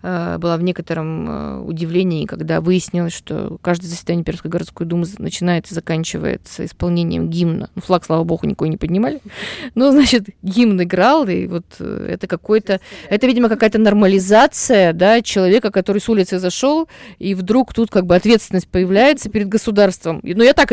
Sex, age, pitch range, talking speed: female, 20-39, 180-235 Hz, 160 wpm